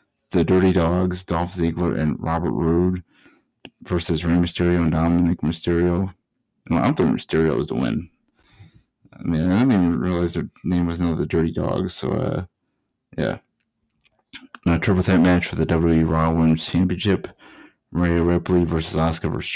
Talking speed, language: 165 wpm, English